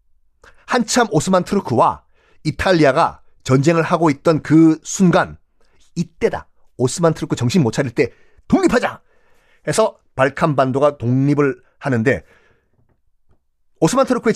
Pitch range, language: 125-205 Hz, Korean